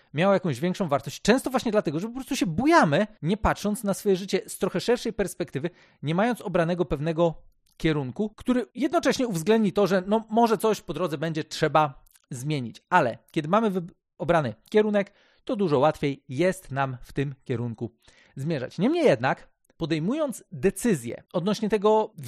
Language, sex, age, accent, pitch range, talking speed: Polish, male, 40-59, native, 150-215 Hz, 160 wpm